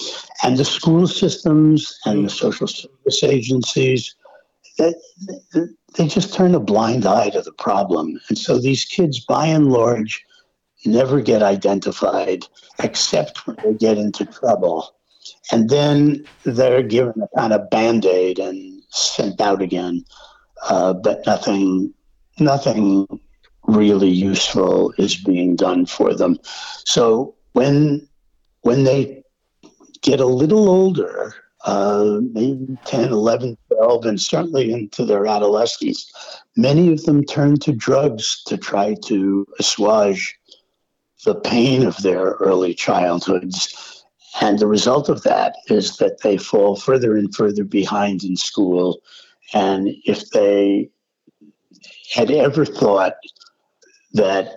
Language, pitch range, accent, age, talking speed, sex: English, 100-165 Hz, American, 60-79, 125 wpm, male